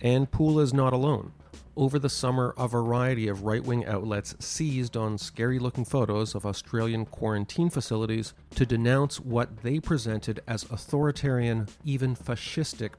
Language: English